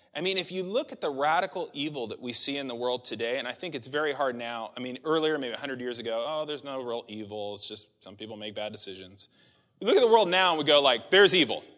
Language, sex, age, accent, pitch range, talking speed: English, male, 30-49, American, 135-195 Hz, 275 wpm